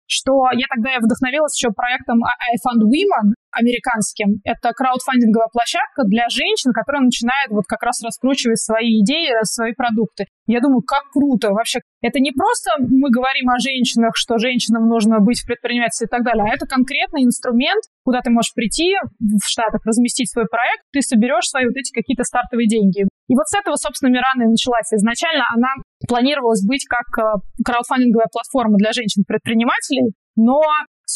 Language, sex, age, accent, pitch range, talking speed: Russian, female, 20-39, native, 225-265 Hz, 165 wpm